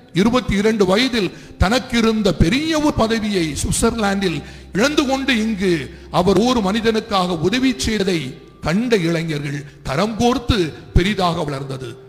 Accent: native